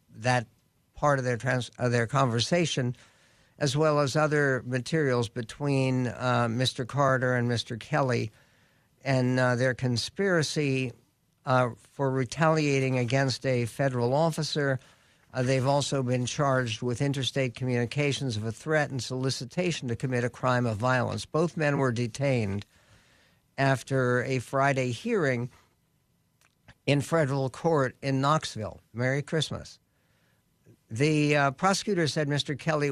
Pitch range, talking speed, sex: 125-145 Hz, 130 wpm, male